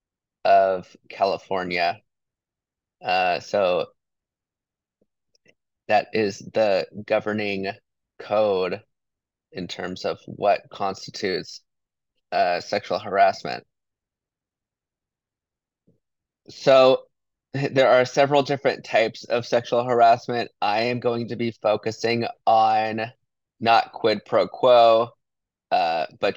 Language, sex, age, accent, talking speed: English, male, 20-39, American, 90 wpm